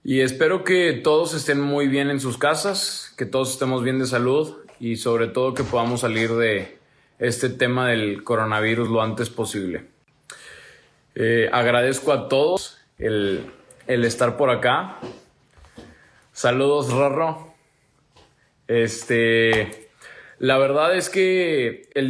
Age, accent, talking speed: 20-39, Mexican, 125 wpm